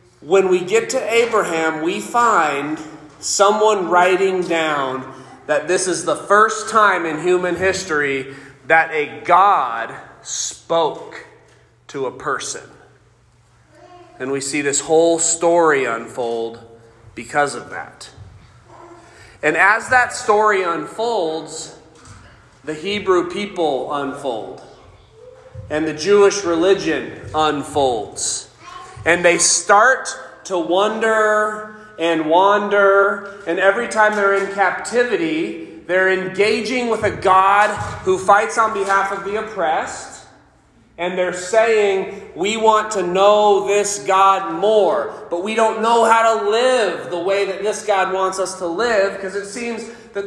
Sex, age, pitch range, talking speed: male, 30-49, 170-215 Hz, 125 wpm